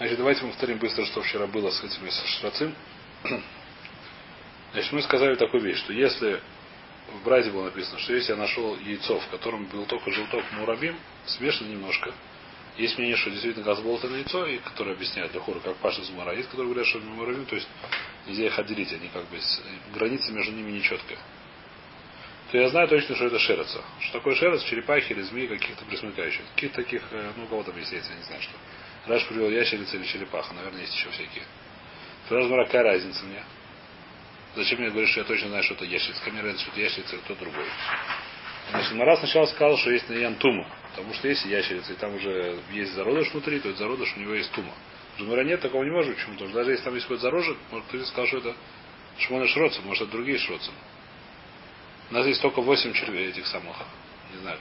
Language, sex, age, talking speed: Russian, male, 30-49, 205 wpm